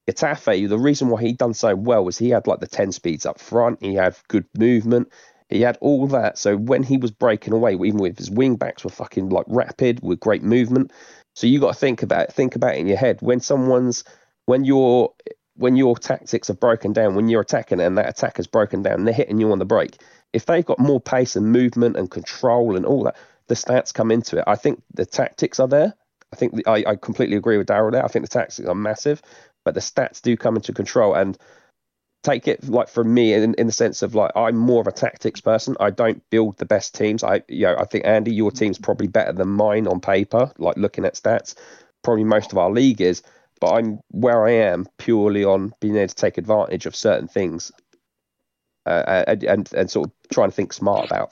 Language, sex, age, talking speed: English, male, 30-49, 235 wpm